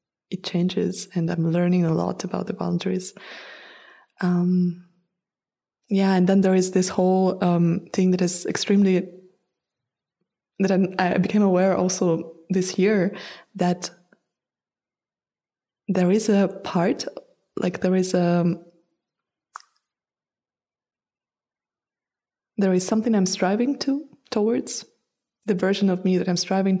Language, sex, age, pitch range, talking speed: English, female, 20-39, 175-190 Hz, 120 wpm